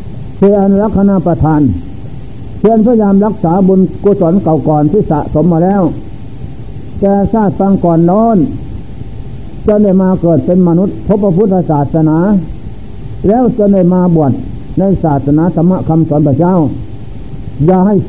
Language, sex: Thai, male